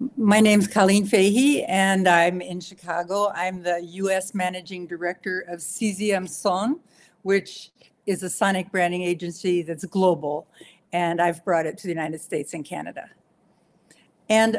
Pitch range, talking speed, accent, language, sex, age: 180-230 Hz, 150 wpm, American, English, female, 60-79